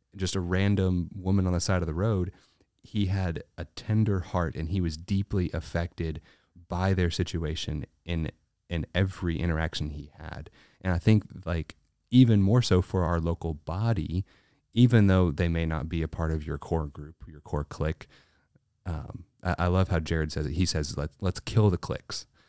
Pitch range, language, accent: 80-100 Hz, English, American